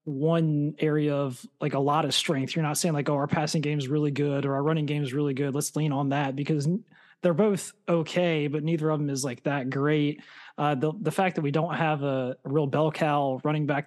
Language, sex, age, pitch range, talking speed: English, male, 20-39, 140-155 Hz, 250 wpm